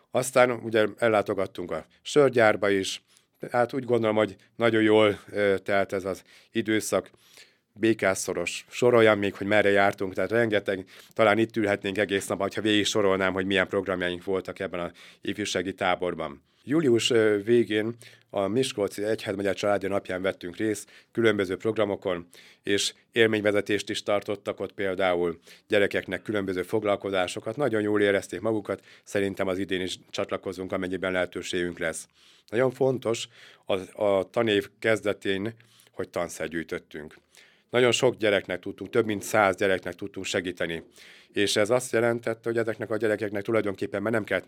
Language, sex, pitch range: Hungarian, male, 95-110 Hz